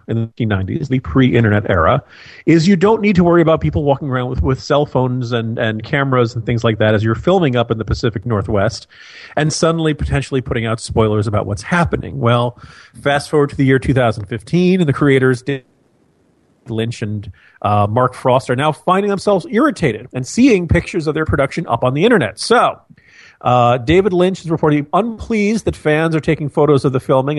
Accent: American